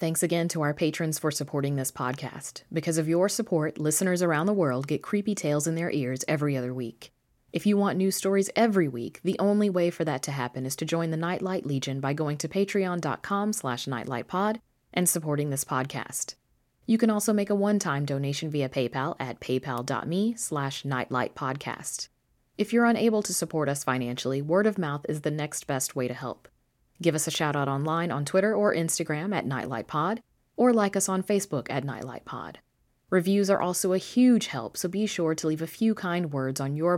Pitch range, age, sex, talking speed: 135-185 Hz, 30-49, female, 195 wpm